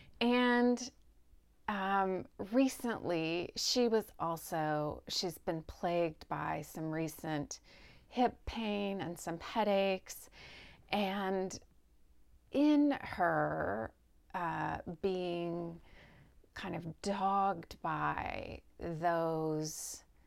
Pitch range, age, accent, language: 155-200 Hz, 30-49, American, English